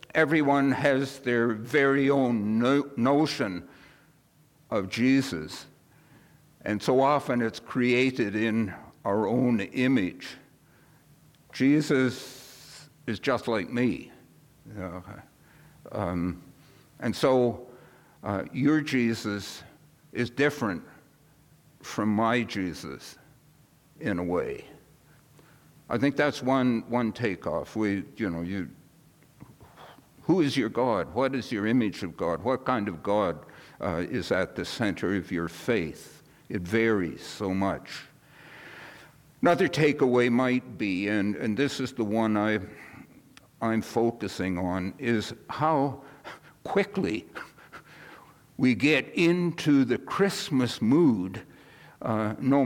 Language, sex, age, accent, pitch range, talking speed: English, male, 60-79, American, 110-145 Hz, 105 wpm